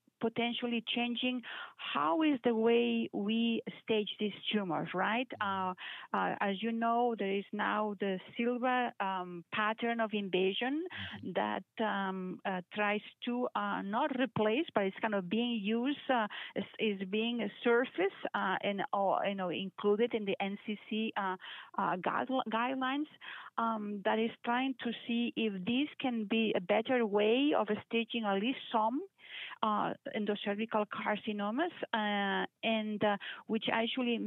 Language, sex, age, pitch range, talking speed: English, female, 40-59, 205-240 Hz, 145 wpm